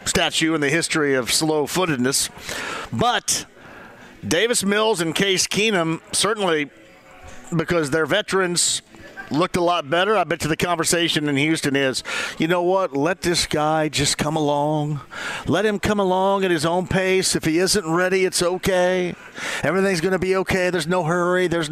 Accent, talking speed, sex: American, 165 wpm, male